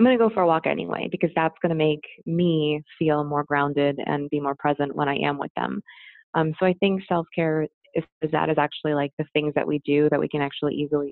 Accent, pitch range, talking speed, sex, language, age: American, 150-170 Hz, 255 wpm, female, English, 20-39